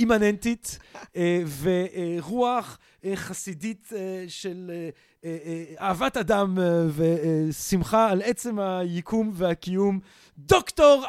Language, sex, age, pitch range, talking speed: Hebrew, male, 40-59, 160-205 Hz, 65 wpm